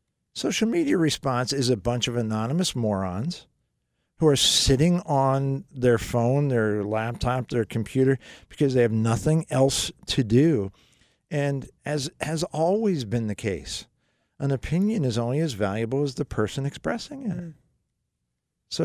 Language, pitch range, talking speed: English, 115-155 Hz, 145 wpm